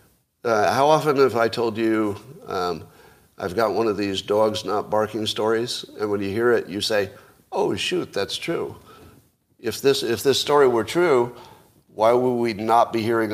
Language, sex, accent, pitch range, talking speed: English, male, American, 105-135 Hz, 180 wpm